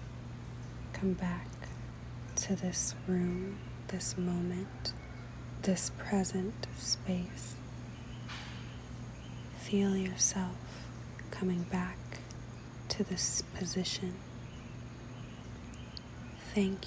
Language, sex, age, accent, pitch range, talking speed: English, female, 30-49, American, 120-180 Hz, 65 wpm